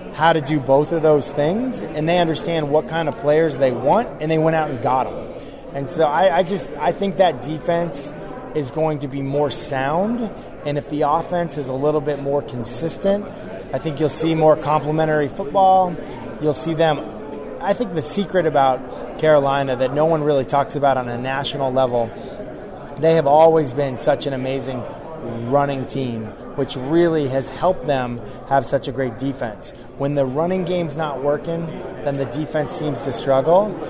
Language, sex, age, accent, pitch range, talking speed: English, male, 20-39, American, 135-160 Hz, 185 wpm